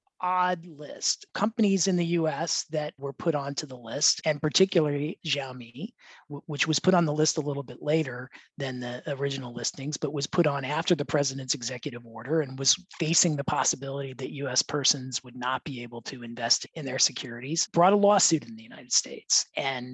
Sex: male